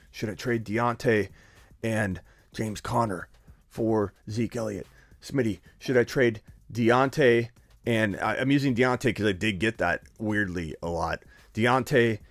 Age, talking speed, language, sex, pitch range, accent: 30-49, 140 wpm, English, male, 105-150 Hz, American